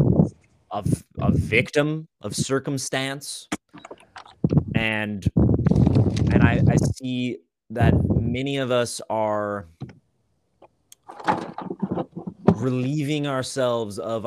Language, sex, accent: English, male, American